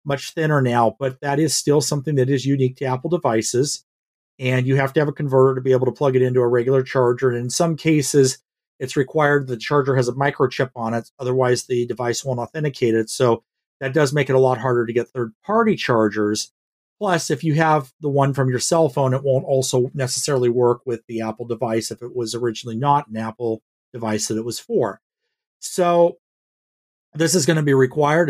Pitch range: 125-150 Hz